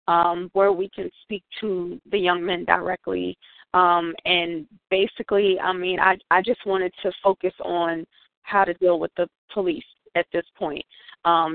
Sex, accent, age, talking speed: female, American, 20-39, 165 wpm